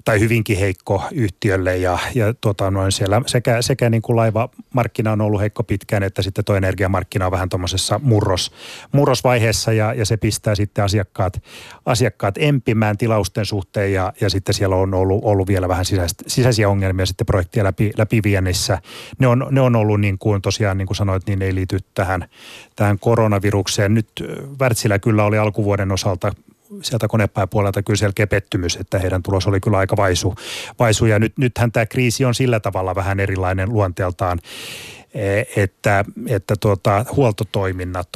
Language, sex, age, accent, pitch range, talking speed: Finnish, male, 30-49, native, 95-115 Hz, 160 wpm